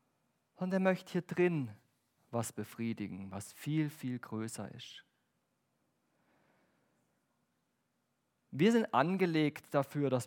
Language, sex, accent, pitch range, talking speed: German, male, German, 125-170 Hz, 100 wpm